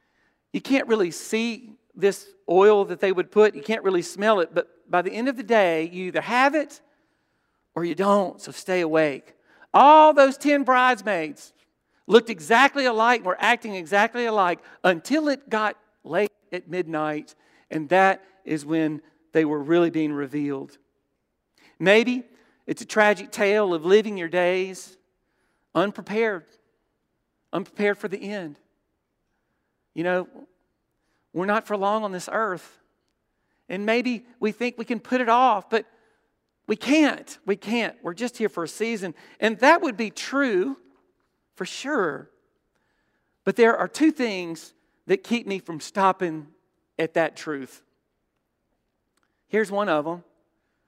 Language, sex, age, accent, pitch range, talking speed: English, male, 50-69, American, 170-225 Hz, 145 wpm